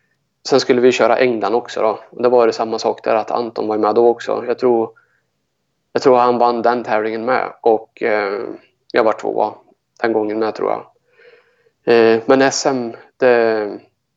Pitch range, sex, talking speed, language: 115-130 Hz, male, 170 wpm, Swedish